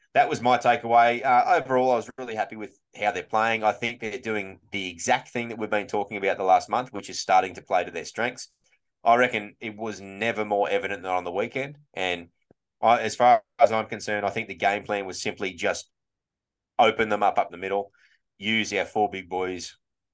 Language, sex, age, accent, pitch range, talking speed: English, male, 20-39, Australian, 95-115 Hz, 220 wpm